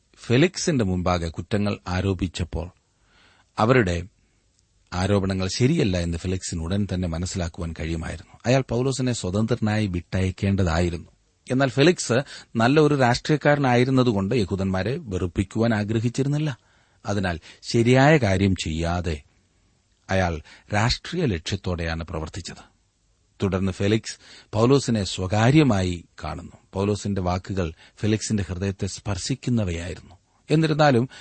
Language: Malayalam